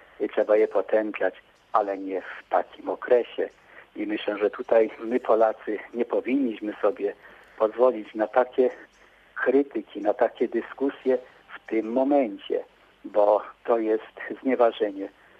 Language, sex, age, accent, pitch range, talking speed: Polish, male, 50-69, native, 110-140 Hz, 120 wpm